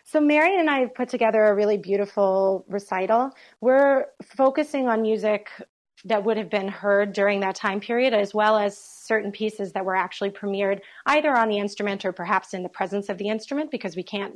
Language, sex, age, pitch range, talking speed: English, female, 30-49, 195-225 Hz, 200 wpm